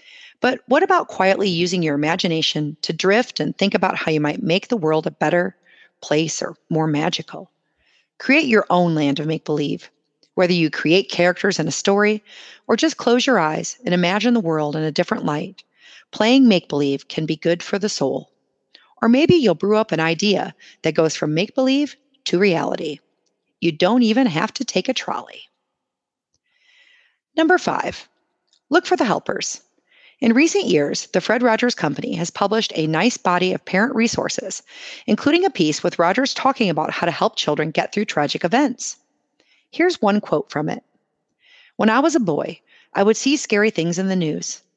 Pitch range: 165-255 Hz